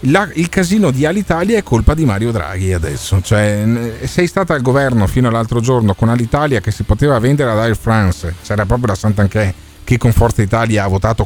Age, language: 40-59, Italian